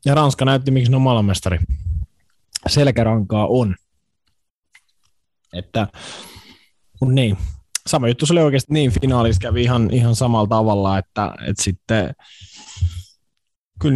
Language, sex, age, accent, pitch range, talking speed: Finnish, male, 20-39, native, 95-125 Hz, 115 wpm